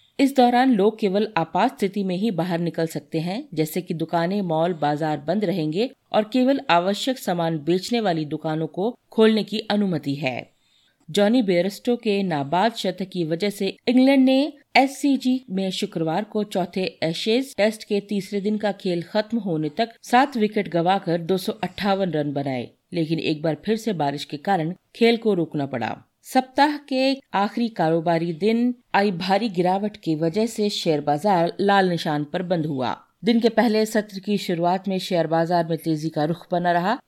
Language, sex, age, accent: Hindi, female, 40-59, native